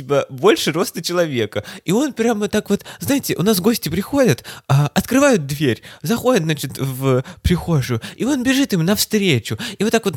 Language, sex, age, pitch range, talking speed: Russian, male, 20-39, 105-155 Hz, 170 wpm